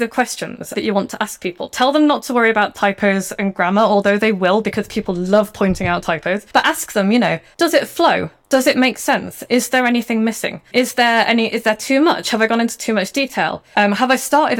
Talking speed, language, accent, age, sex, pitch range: 245 wpm, English, British, 20-39, female, 200-245 Hz